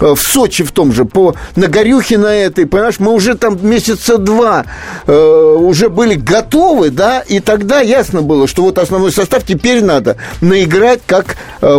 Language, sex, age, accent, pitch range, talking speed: Russian, male, 50-69, native, 165-230 Hz, 170 wpm